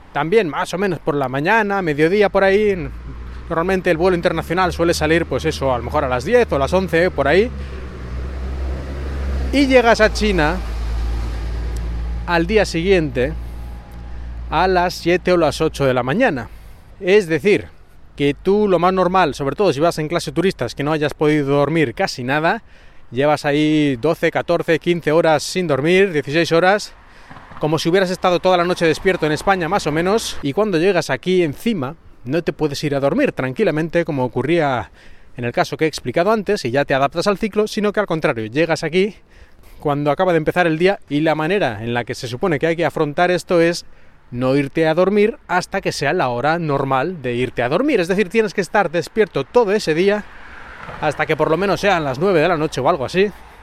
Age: 30-49